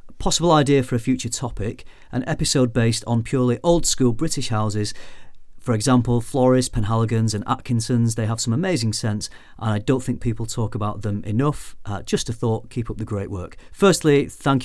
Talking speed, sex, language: 185 wpm, male, English